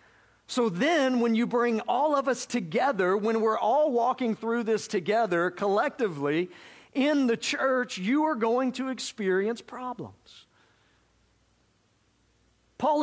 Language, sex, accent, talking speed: English, male, American, 125 wpm